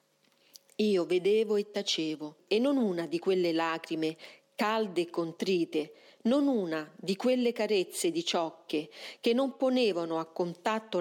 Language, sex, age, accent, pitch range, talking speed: Italian, female, 40-59, native, 165-220 Hz, 135 wpm